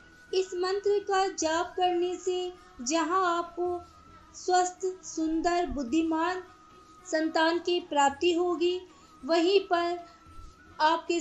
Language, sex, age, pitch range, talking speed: Hindi, female, 20-39, 310-345 Hz, 95 wpm